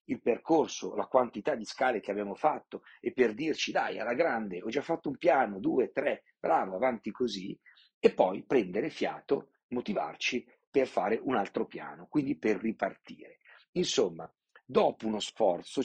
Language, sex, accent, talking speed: Italian, male, native, 160 wpm